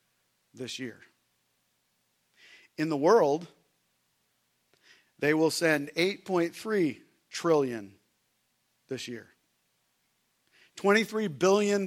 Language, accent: English, American